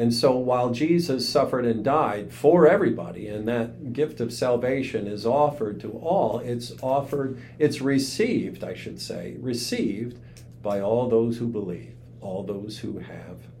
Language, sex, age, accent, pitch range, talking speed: English, male, 50-69, American, 105-140 Hz, 155 wpm